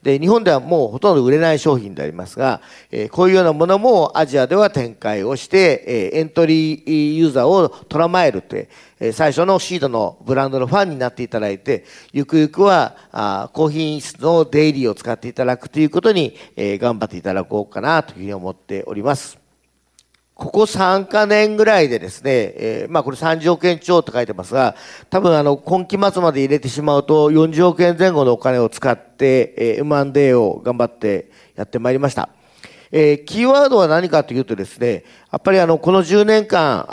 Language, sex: Japanese, male